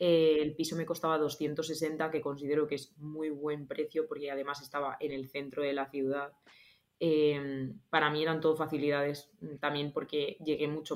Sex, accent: female, Spanish